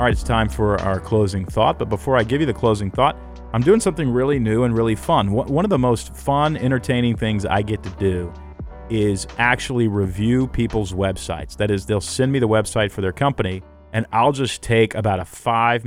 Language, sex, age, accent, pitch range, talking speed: English, male, 40-59, American, 95-120 Hz, 215 wpm